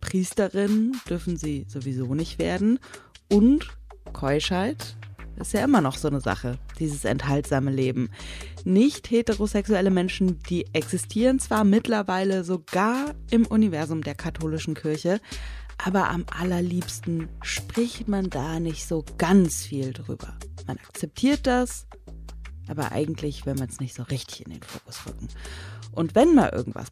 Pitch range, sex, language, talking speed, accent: 125-205 Hz, female, German, 135 wpm, German